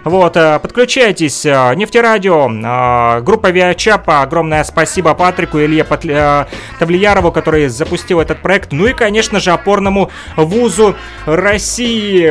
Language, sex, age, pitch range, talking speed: Russian, male, 30-49, 160-200 Hz, 100 wpm